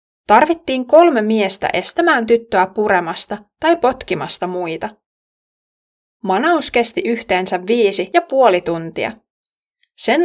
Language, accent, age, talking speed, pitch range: Finnish, native, 20-39, 100 wpm, 190-255 Hz